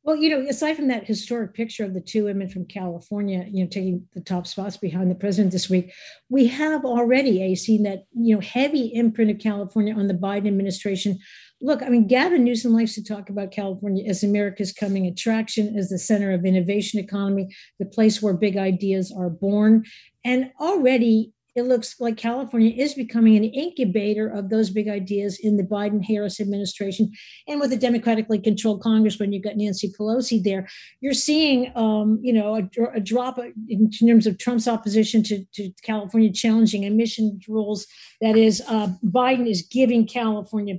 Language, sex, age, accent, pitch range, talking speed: English, female, 50-69, American, 200-235 Hz, 180 wpm